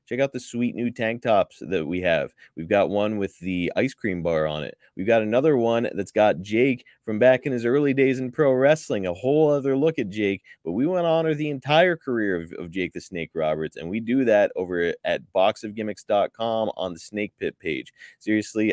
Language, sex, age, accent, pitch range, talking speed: English, male, 20-39, American, 85-120 Hz, 220 wpm